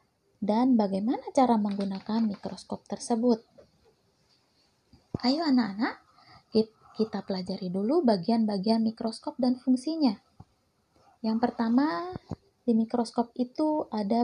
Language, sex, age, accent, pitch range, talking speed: Indonesian, female, 20-39, native, 210-265 Hz, 90 wpm